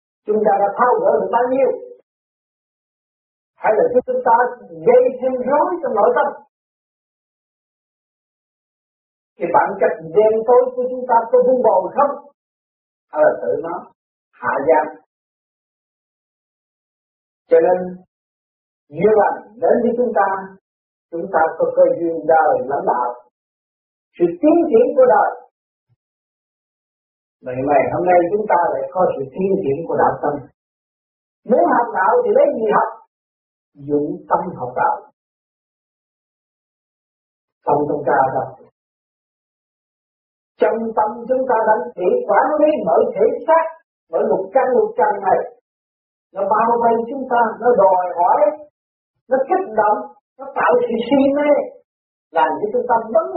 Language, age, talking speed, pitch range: Vietnamese, 50-69, 135 wpm, 205-325 Hz